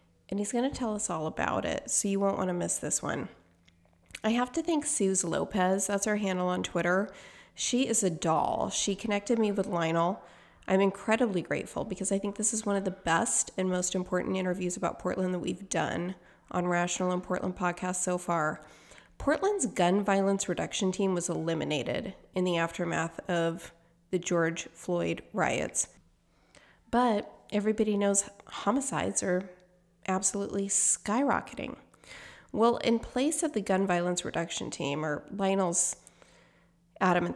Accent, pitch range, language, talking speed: American, 170-200 Hz, English, 160 wpm